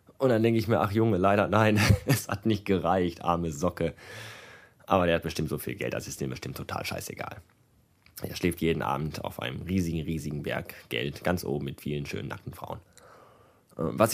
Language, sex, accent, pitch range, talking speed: German, male, German, 95-120 Hz, 195 wpm